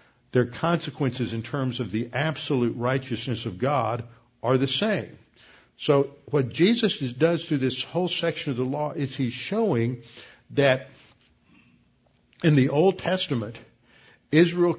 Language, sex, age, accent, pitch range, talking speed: English, male, 60-79, American, 115-155 Hz, 135 wpm